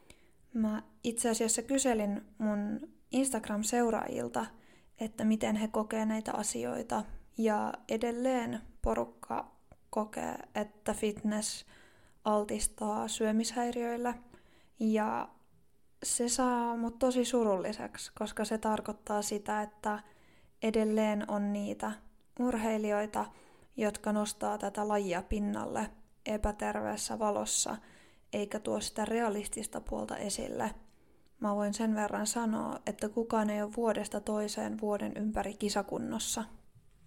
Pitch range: 205-225 Hz